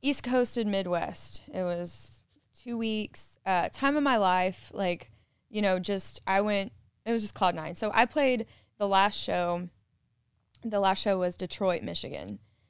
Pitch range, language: 175-215 Hz, English